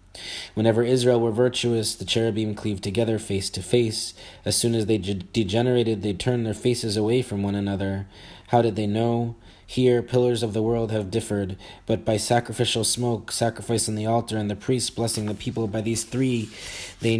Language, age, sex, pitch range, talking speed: English, 20-39, male, 105-120 Hz, 190 wpm